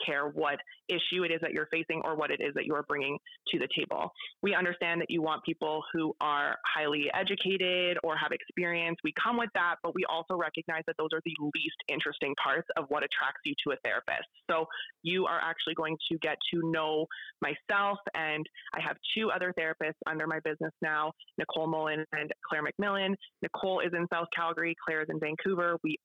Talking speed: 205 wpm